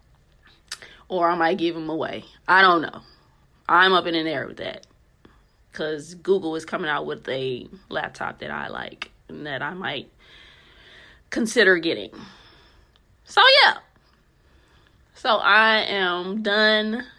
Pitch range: 185-290 Hz